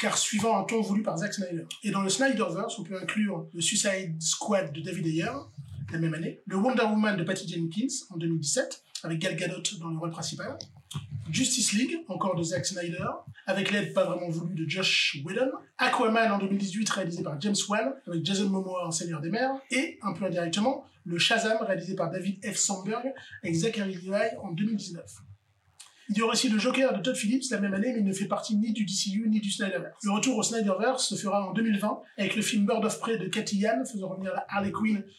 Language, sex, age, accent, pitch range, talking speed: French, male, 30-49, French, 180-225 Hz, 220 wpm